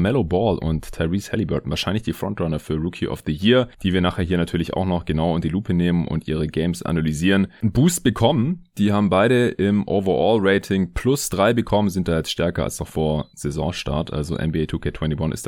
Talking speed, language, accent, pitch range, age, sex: 205 wpm, German, German, 80-110 Hz, 30-49, male